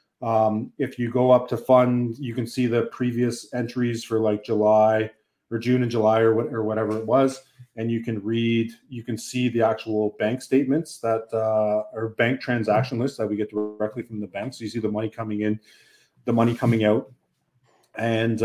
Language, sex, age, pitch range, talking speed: English, male, 30-49, 110-130 Hz, 195 wpm